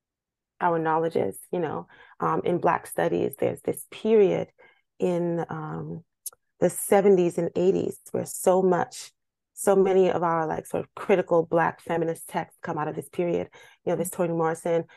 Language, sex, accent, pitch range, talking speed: English, female, American, 165-190 Hz, 165 wpm